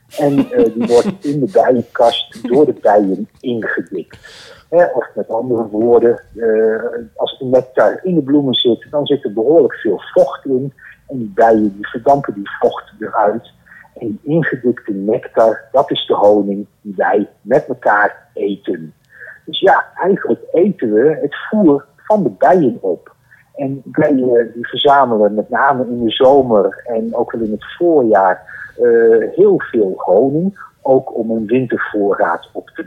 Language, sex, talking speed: Dutch, male, 160 wpm